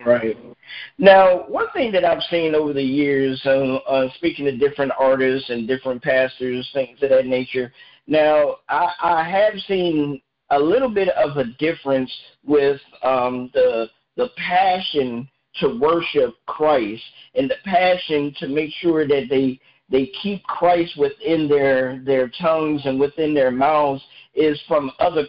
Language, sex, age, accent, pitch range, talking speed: English, male, 50-69, American, 135-180 Hz, 150 wpm